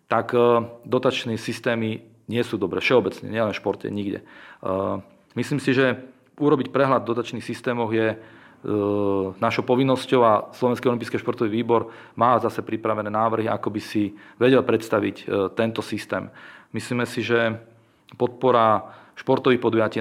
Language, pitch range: Slovak, 110-120 Hz